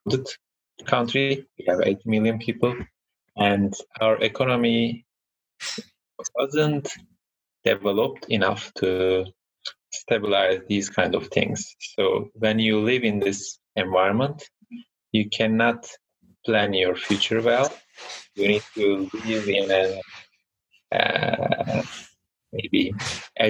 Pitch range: 100-125 Hz